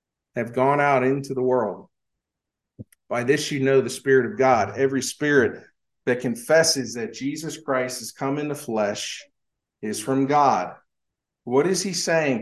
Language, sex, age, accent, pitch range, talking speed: English, male, 50-69, American, 130-165 Hz, 160 wpm